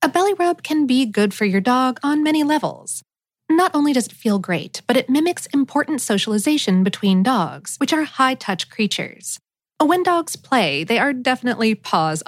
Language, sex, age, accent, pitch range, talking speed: English, female, 30-49, American, 200-295 Hz, 175 wpm